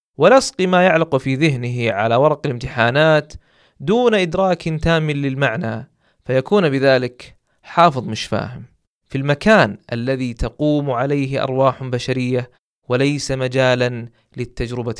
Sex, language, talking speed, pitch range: male, Arabic, 110 wpm, 125-175 Hz